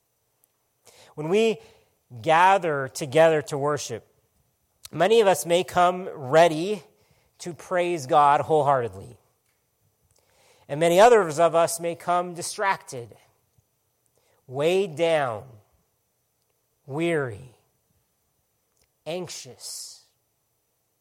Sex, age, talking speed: male, 40-59, 80 wpm